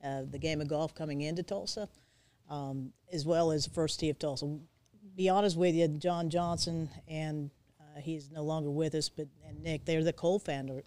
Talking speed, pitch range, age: 195 wpm, 145-165 Hz, 40-59